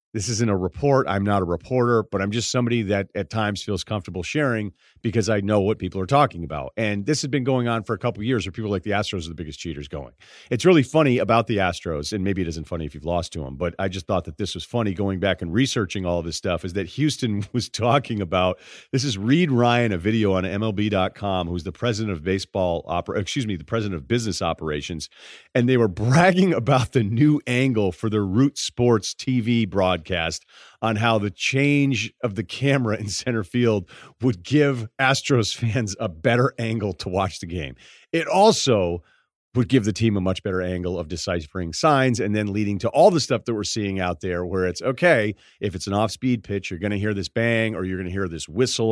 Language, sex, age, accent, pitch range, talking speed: English, male, 40-59, American, 95-125 Hz, 230 wpm